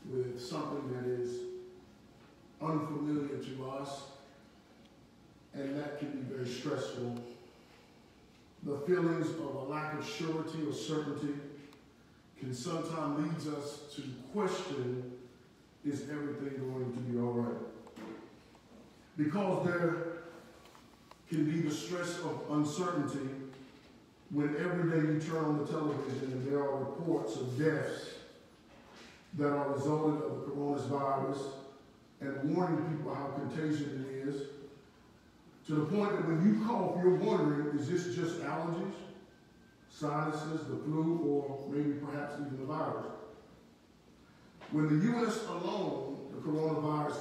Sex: male